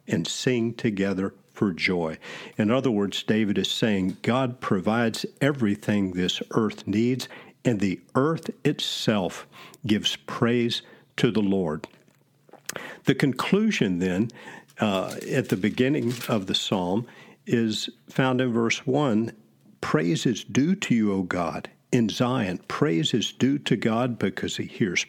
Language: English